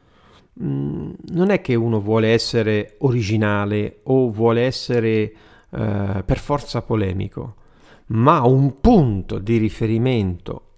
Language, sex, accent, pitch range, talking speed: Italian, male, native, 100-150 Hz, 105 wpm